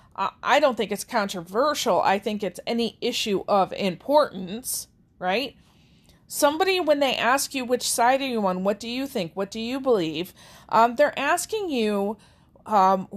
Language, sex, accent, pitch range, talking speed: English, female, American, 205-280 Hz, 165 wpm